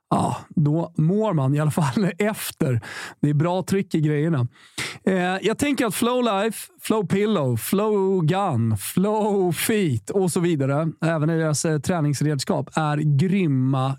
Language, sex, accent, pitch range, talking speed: Swedish, male, native, 145-205 Hz, 155 wpm